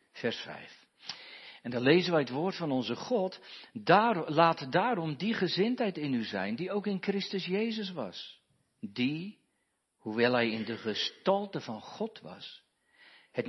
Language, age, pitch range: Dutch, 50-69, 125-185 Hz